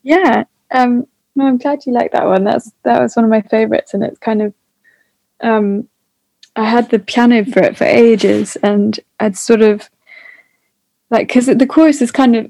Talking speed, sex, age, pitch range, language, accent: 190 wpm, female, 20-39, 205-240 Hz, English, British